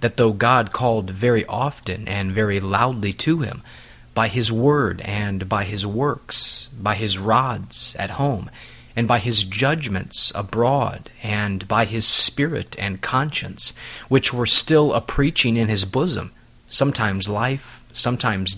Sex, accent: male, American